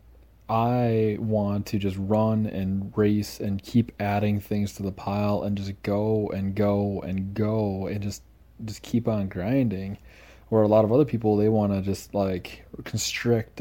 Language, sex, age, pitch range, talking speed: English, male, 20-39, 100-115 Hz, 170 wpm